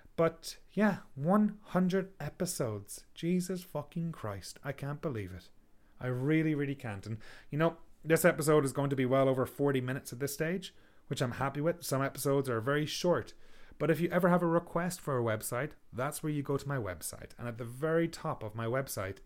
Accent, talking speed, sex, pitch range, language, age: Irish, 205 wpm, male, 125-165 Hz, English, 30-49